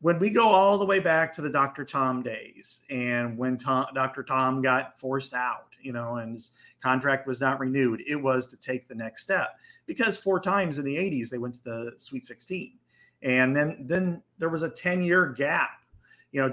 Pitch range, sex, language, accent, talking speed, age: 130-170 Hz, male, English, American, 210 wpm, 30-49